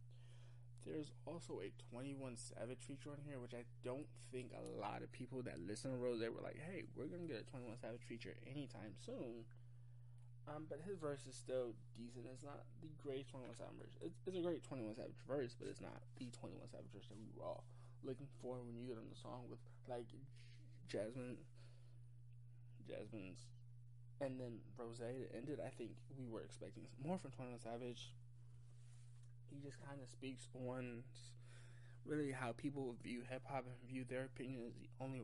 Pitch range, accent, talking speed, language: 120-130 Hz, American, 185 wpm, English